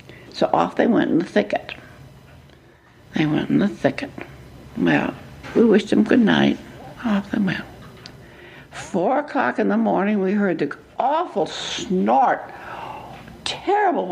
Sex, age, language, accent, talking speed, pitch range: female, 60-79, English, American, 135 wpm, 170-250 Hz